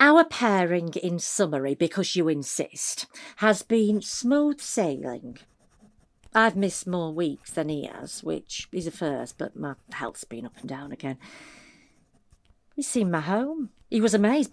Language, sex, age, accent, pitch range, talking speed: English, female, 50-69, British, 160-235 Hz, 155 wpm